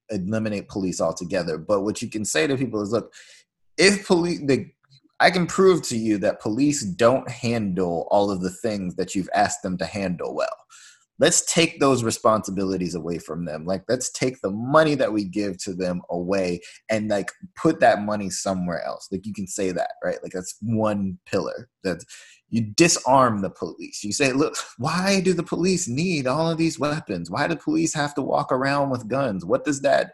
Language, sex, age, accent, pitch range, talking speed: English, male, 30-49, American, 95-140 Hz, 195 wpm